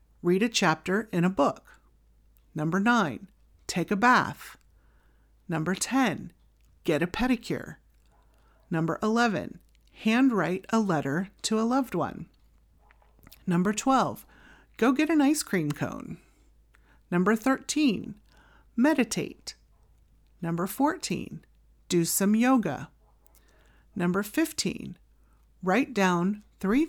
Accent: American